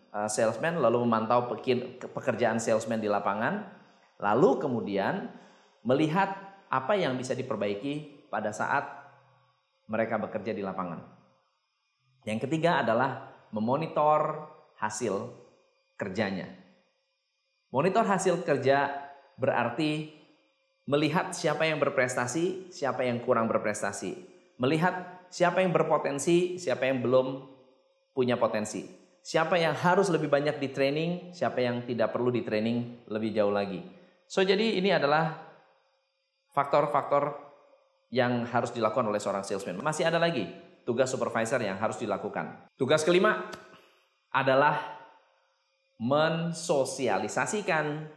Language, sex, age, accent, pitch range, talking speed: Indonesian, male, 20-39, native, 120-170 Hz, 105 wpm